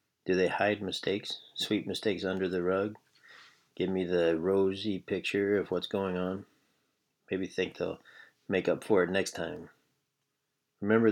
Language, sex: English, male